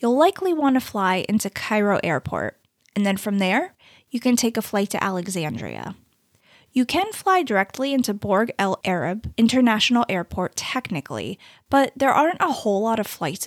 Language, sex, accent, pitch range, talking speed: English, female, American, 190-265 Hz, 170 wpm